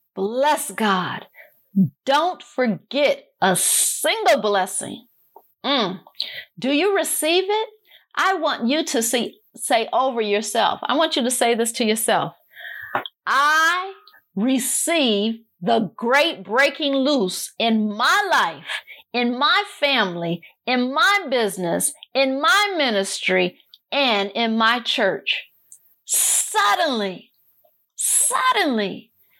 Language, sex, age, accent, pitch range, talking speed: English, female, 50-69, American, 215-315 Hz, 105 wpm